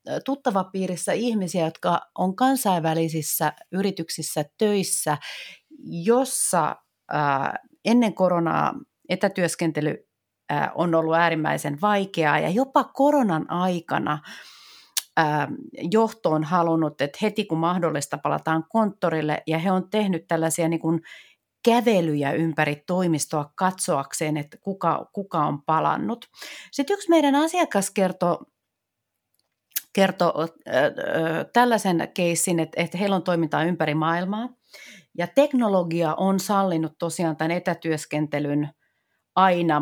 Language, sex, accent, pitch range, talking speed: Finnish, female, native, 160-210 Hz, 100 wpm